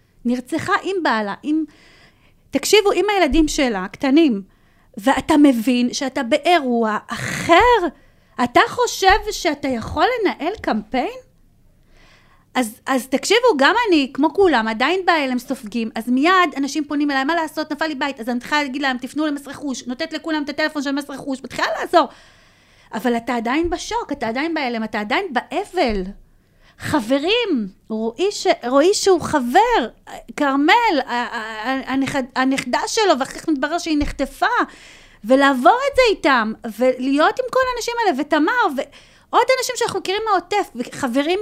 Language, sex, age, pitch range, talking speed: Hebrew, female, 30-49, 255-360 Hz, 140 wpm